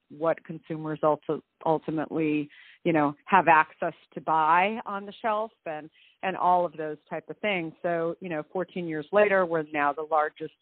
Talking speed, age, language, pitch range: 170 wpm, 40-59, English, 150-170 Hz